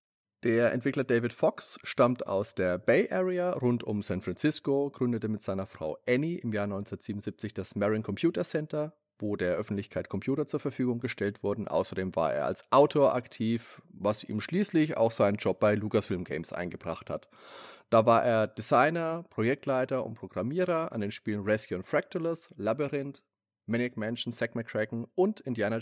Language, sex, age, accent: German, male, 30-49, German